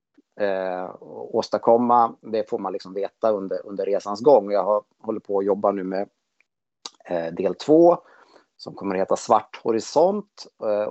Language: Swedish